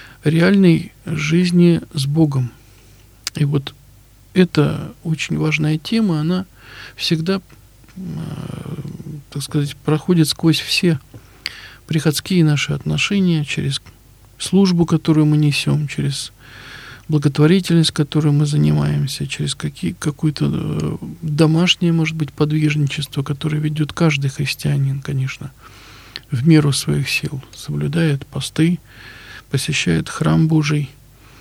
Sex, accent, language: male, native, Russian